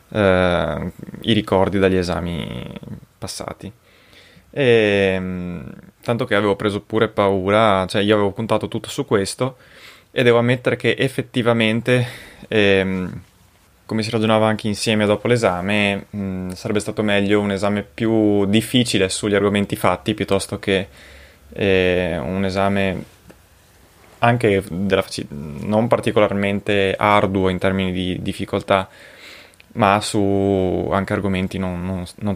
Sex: male